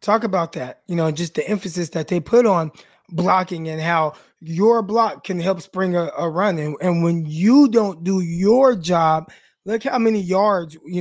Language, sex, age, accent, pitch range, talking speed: English, male, 20-39, American, 170-210 Hz, 195 wpm